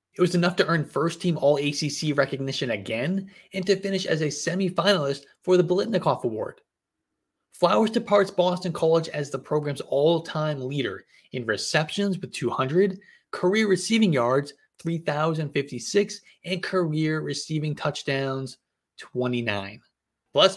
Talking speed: 125 wpm